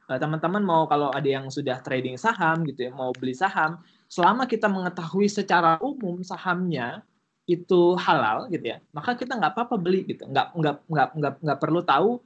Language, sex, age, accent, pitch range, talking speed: Indonesian, male, 20-39, native, 150-205 Hz, 155 wpm